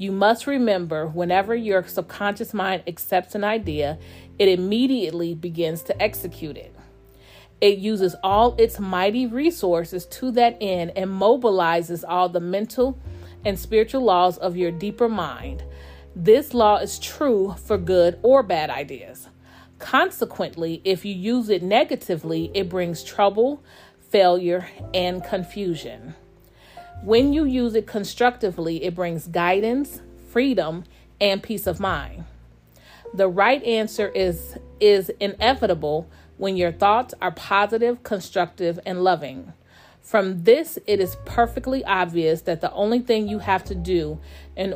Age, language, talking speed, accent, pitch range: 40-59, English, 135 wpm, American, 175-220 Hz